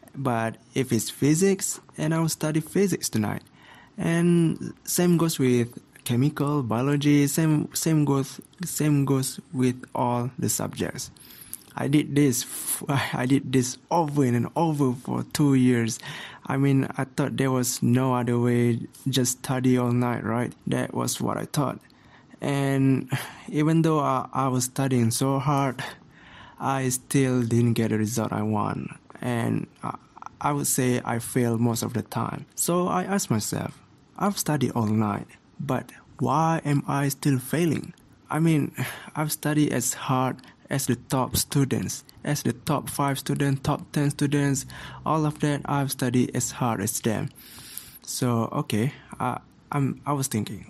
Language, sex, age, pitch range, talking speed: English, male, 20-39, 120-145 Hz, 155 wpm